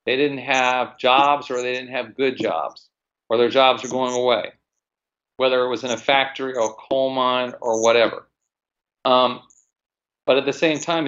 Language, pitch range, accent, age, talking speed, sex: English, 120-150 Hz, American, 40-59, 185 wpm, male